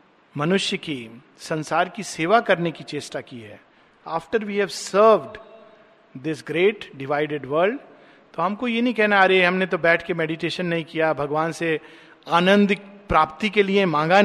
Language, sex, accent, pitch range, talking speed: Hindi, male, native, 160-210 Hz, 165 wpm